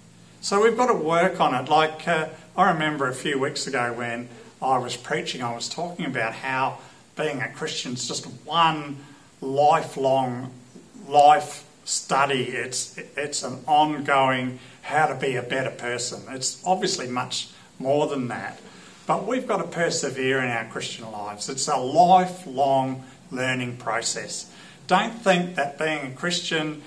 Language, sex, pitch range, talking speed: English, male, 130-170 Hz, 155 wpm